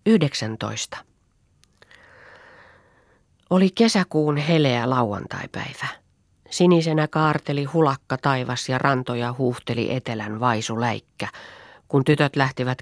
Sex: female